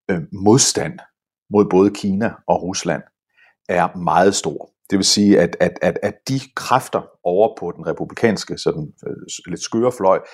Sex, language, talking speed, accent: male, Danish, 145 wpm, native